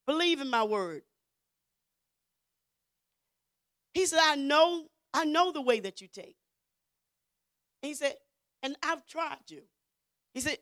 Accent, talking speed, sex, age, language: American, 130 wpm, female, 40-59, English